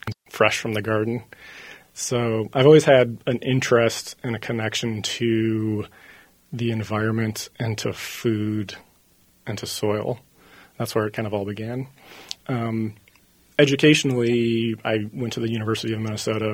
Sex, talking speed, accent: male, 140 wpm, American